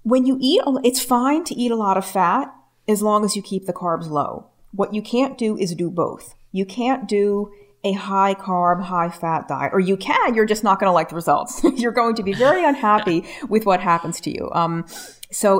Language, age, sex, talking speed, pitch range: English, 40-59, female, 220 wpm, 165-210 Hz